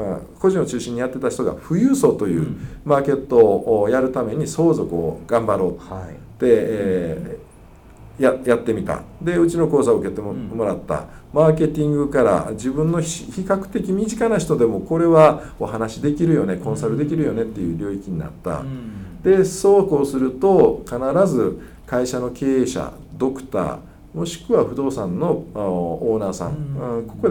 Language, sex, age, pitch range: Japanese, male, 50-69, 115-185 Hz